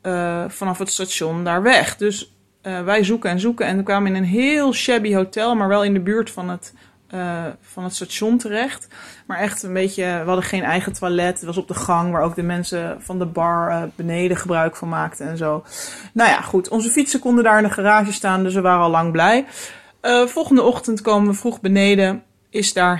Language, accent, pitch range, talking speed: Dutch, Dutch, 175-205 Hz, 215 wpm